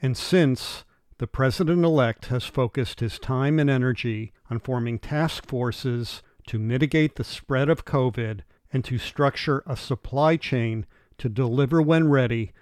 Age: 50-69